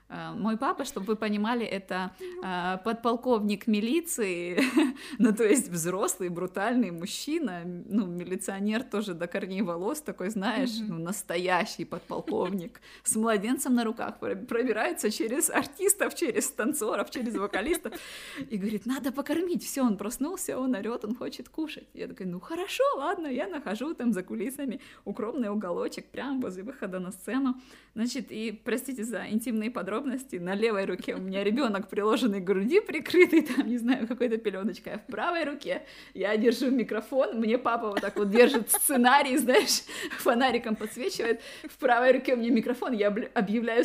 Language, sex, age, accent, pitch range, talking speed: Russian, female, 20-39, native, 200-270 Hz, 150 wpm